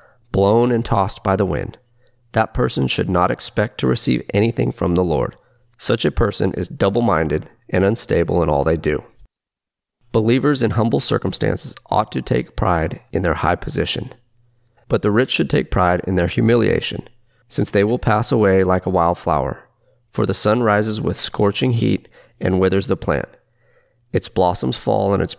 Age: 30-49